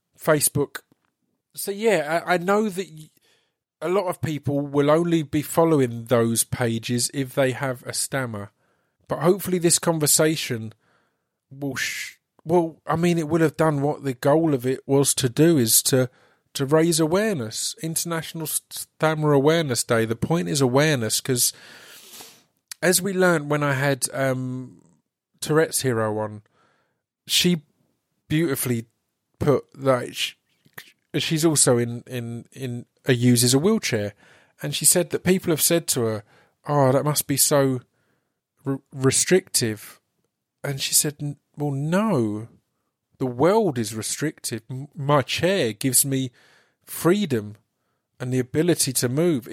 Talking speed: 140 wpm